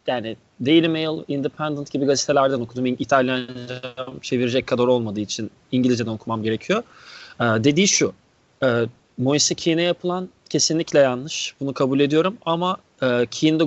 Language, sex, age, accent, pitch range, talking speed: Turkish, male, 30-49, native, 125-155 Hz, 130 wpm